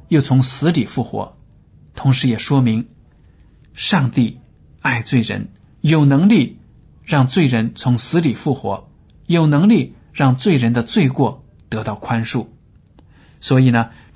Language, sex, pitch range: Chinese, male, 115-145 Hz